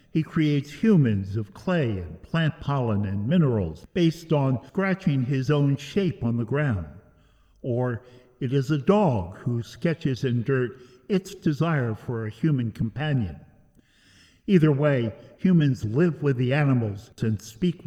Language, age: English, 60-79